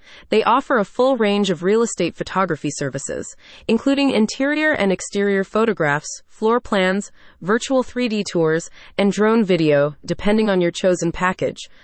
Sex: female